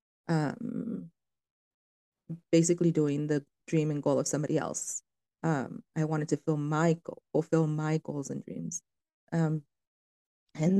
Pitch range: 145-170 Hz